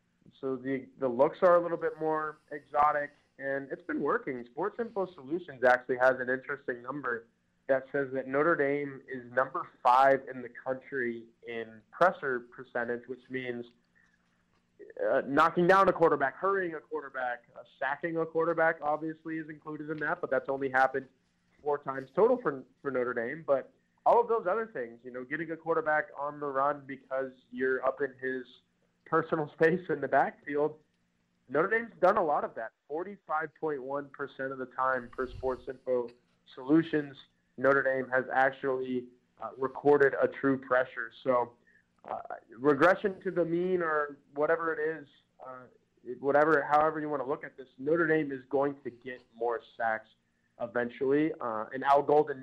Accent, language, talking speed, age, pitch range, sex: American, English, 170 wpm, 20-39, 125-155 Hz, male